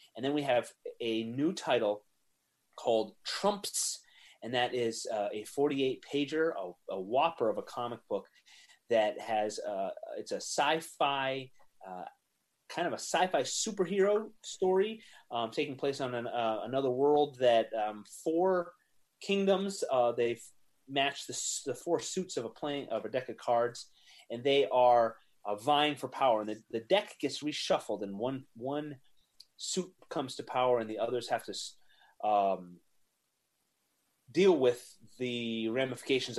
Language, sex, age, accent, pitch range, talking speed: English, male, 30-49, American, 110-160 Hz, 155 wpm